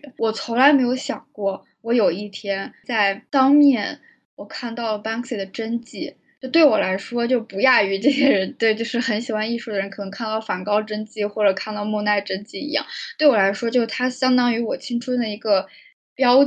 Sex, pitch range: female, 205-260 Hz